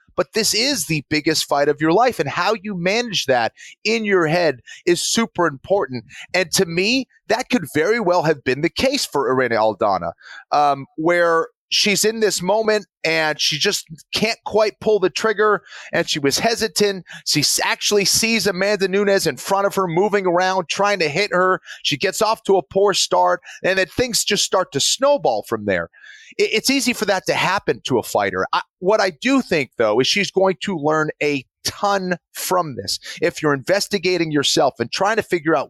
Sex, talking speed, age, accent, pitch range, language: male, 195 wpm, 30-49, American, 155-205 Hz, English